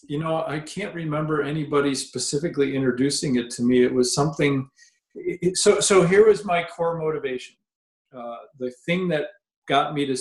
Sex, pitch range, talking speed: male, 125-160 Hz, 165 wpm